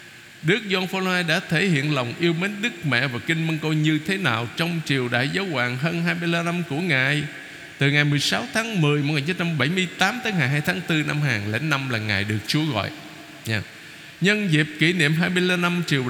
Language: Vietnamese